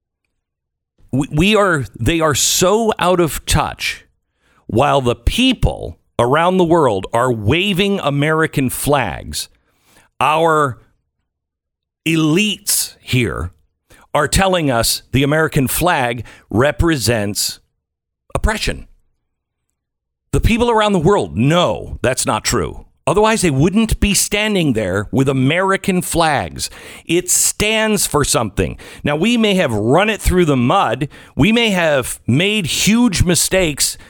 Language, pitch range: English, 115-190 Hz